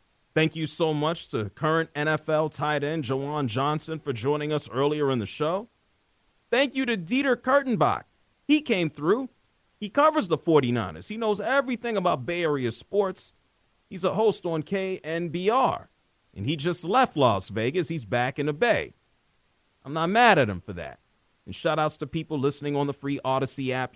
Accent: American